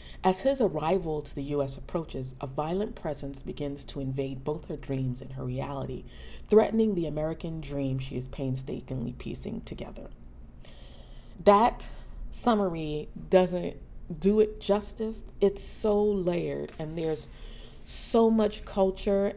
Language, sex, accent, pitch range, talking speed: English, female, American, 135-190 Hz, 130 wpm